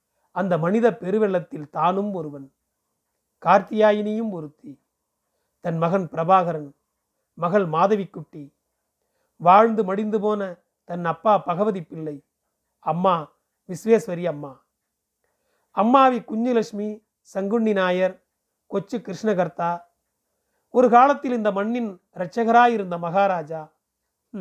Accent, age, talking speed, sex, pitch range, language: native, 40-59, 85 wpm, male, 175-225 Hz, Tamil